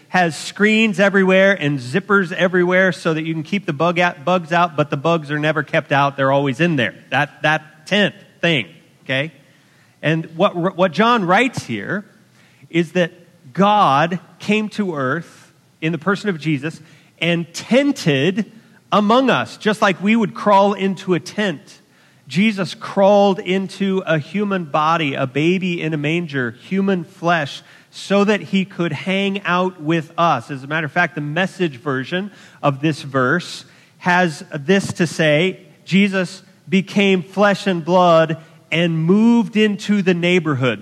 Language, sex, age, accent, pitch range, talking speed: English, male, 40-59, American, 155-190 Hz, 155 wpm